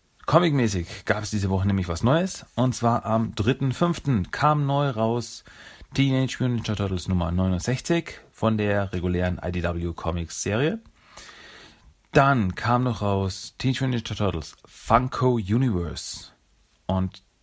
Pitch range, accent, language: 90-115 Hz, German, German